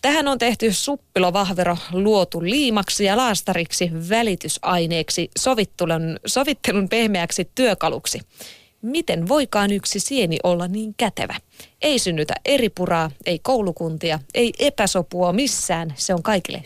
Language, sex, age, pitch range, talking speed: Finnish, female, 20-39, 175-220 Hz, 115 wpm